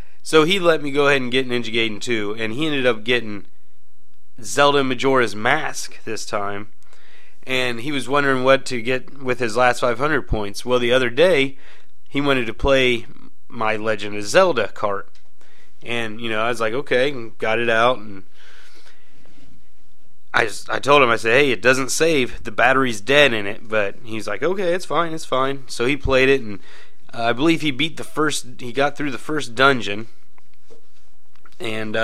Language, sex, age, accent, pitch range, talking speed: English, male, 30-49, American, 115-140 Hz, 185 wpm